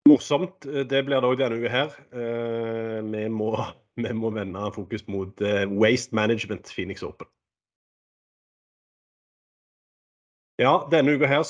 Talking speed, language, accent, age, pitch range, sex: 110 wpm, English, Norwegian, 30-49, 105-120 Hz, male